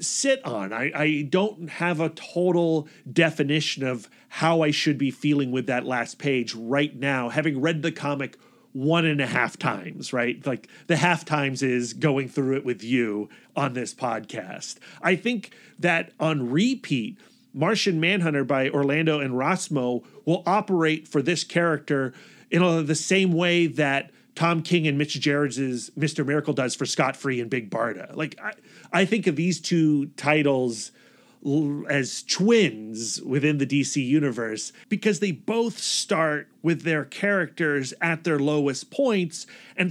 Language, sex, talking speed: English, male, 160 wpm